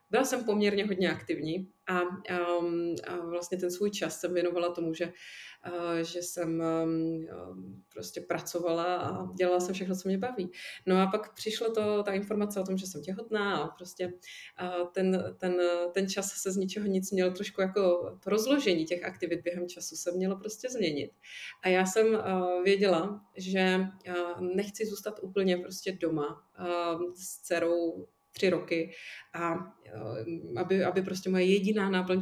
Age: 30-49